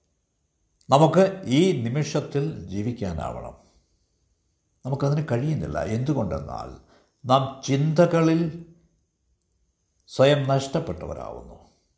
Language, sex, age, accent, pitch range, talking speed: Malayalam, male, 60-79, native, 85-140 Hz, 55 wpm